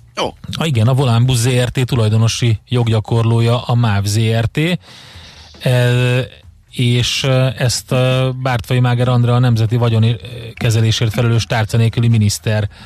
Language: Hungarian